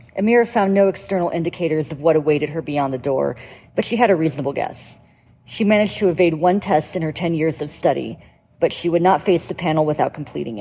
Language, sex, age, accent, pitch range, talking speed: English, female, 40-59, American, 145-180 Hz, 220 wpm